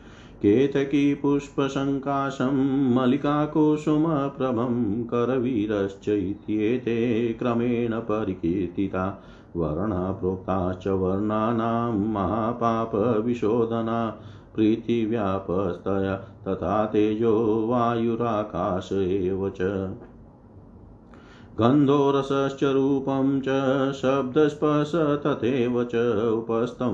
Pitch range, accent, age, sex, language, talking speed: 100-125 Hz, native, 50-69, male, Hindi, 35 wpm